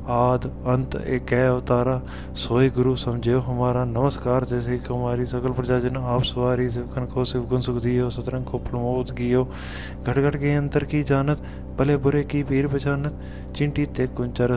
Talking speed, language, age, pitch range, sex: 155 wpm, Punjabi, 20-39, 120-130 Hz, male